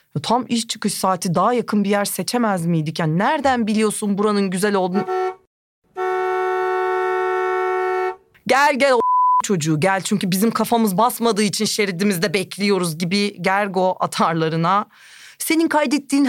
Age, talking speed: 30-49, 120 wpm